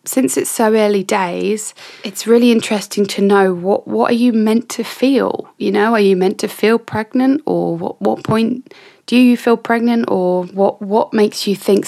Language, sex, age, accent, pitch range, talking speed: English, female, 20-39, British, 185-250 Hz, 195 wpm